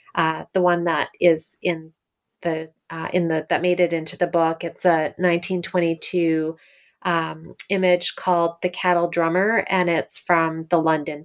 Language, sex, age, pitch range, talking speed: English, female, 30-49, 165-185 Hz, 155 wpm